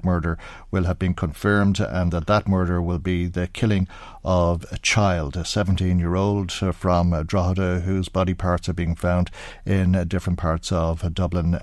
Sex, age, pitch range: male, 60-79, 90-100 Hz